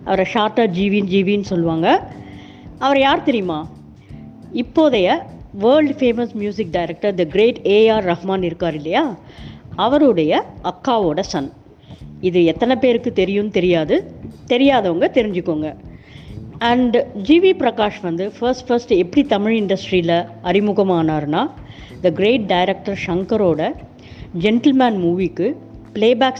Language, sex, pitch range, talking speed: Tamil, female, 170-240 Hz, 105 wpm